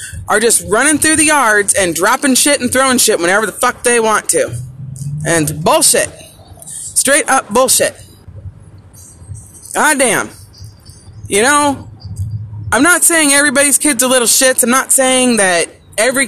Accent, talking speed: American, 150 wpm